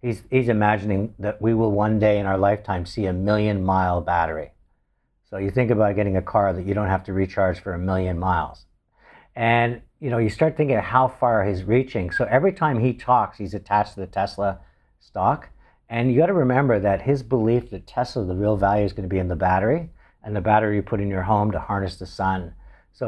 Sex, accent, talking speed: male, American, 230 wpm